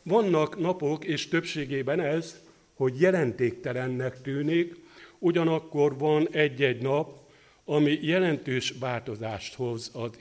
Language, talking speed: Hungarian, 100 wpm